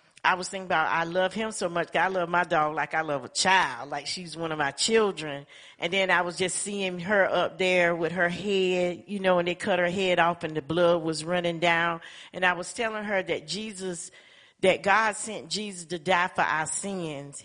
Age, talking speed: 40-59, 225 wpm